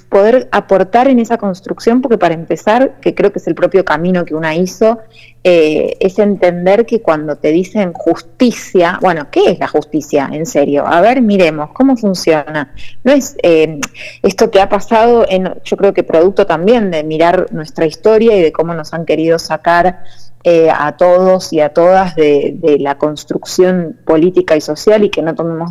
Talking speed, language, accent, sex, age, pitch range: 180 wpm, Spanish, Argentinian, female, 20-39, 165-215 Hz